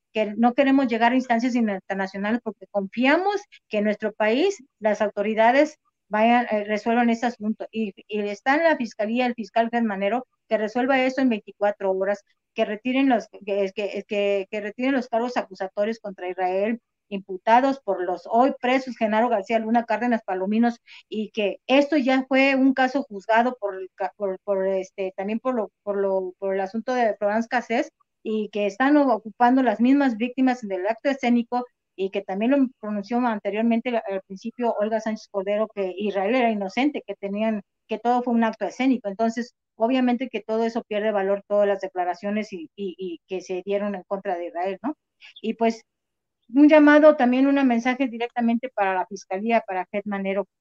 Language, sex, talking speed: Spanish, female, 180 wpm